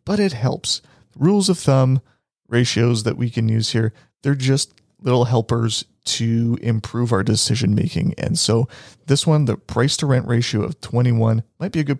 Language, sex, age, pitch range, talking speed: English, male, 30-49, 115-145 Hz, 180 wpm